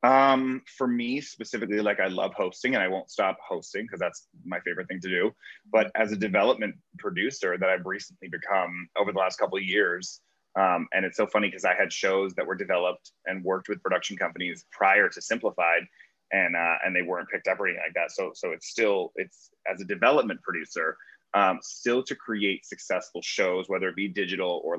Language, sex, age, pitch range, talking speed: English, male, 30-49, 95-135 Hz, 210 wpm